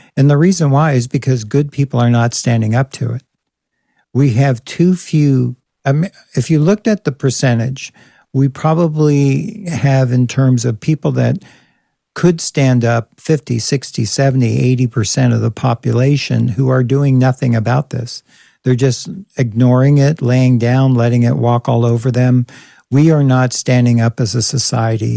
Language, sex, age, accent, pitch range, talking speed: English, male, 60-79, American, 120-140 Hz, 165 wpm